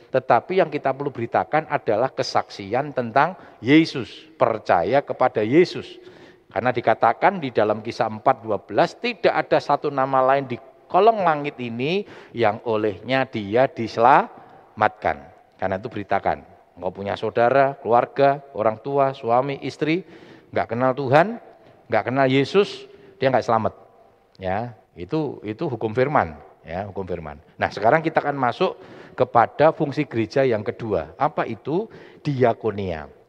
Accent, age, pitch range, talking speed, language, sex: native, 50-69, 105-145 Hz, 130 wpm, Indonesian, male